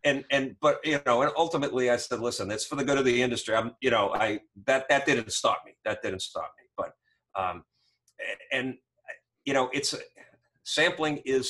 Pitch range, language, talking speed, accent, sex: 105-135 Hz, English, 200 wpm, American, male